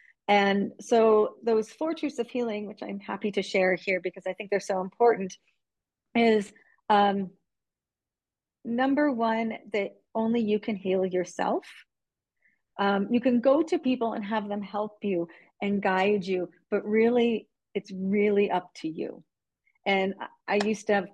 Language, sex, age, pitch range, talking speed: English, female, 40-59, 185-225 Hz, 155 wpm